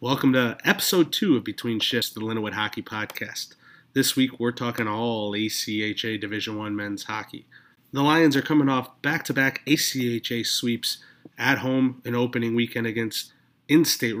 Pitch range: 115-130 Hz